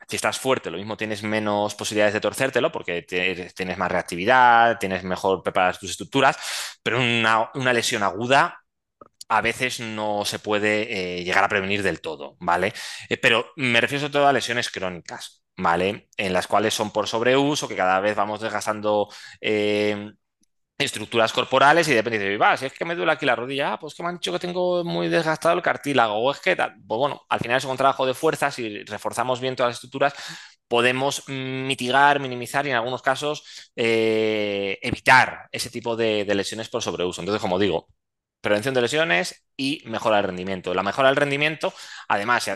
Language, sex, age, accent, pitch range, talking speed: Spanish, male, 20-39, Spanish, 105-135 Hz, 190 wpm